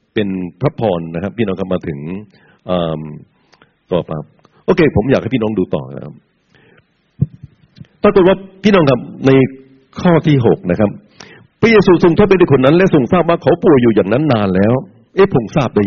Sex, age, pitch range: male, 60-79, 95-135 Hz